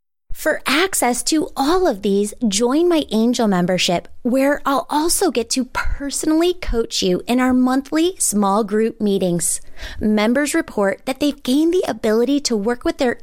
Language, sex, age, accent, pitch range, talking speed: English, female, 20-39, American, 215-295 Hz, 160 wpm